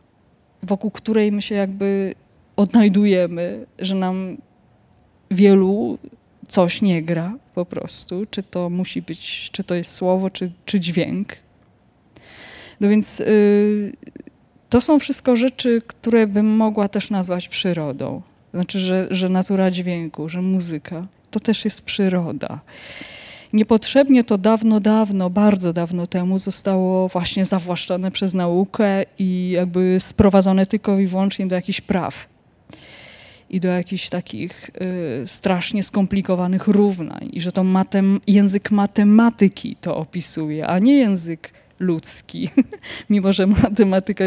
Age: 20-39